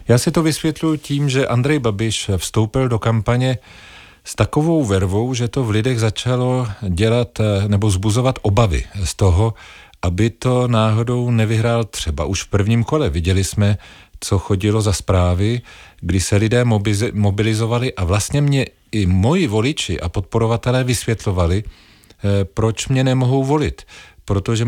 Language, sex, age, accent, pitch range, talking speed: Czech, male, 40-59, native, 95-120 Hz, 145 wpm